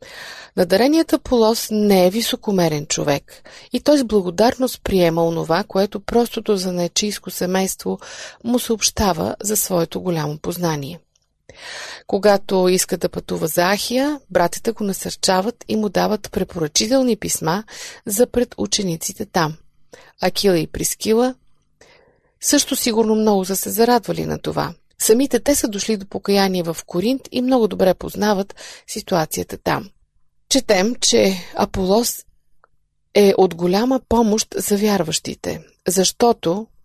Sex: female